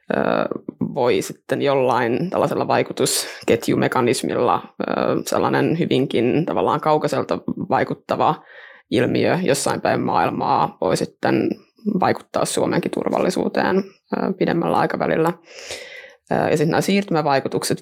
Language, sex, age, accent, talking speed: Finnish, female, 20-39, native, 85 wpm